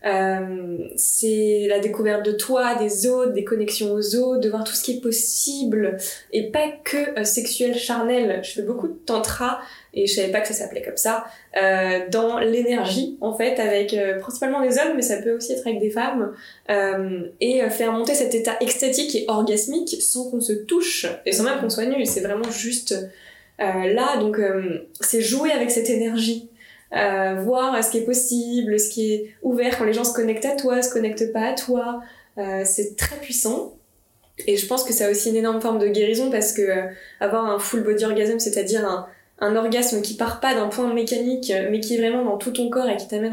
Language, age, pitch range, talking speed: French, 20-39, 210-245 Hz, 215 wpm